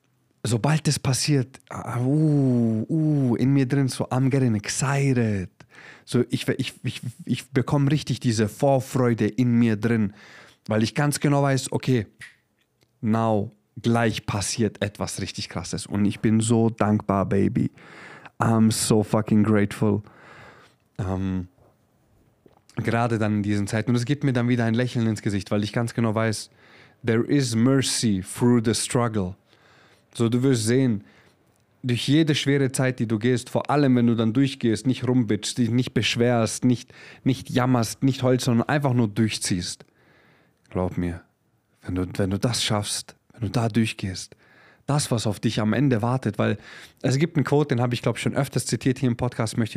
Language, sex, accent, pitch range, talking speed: German, male, German, 110-130 Hz, 170 wpm